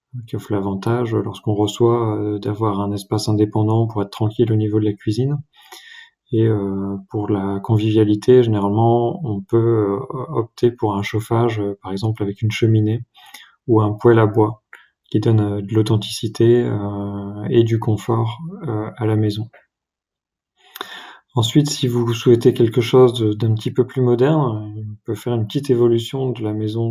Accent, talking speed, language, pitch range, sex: French, 150 wpm, French, 110-120 Hz, male